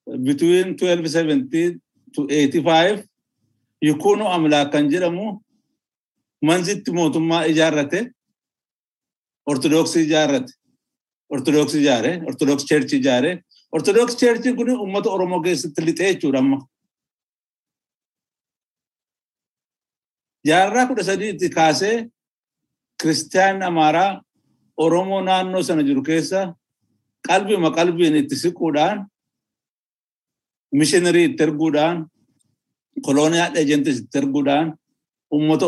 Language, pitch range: Swedish, 150-195 Hz